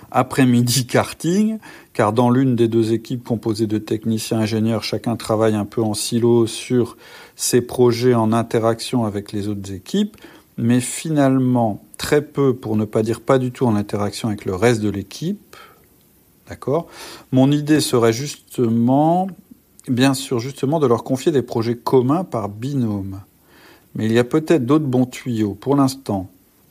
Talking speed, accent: 155 wpm, French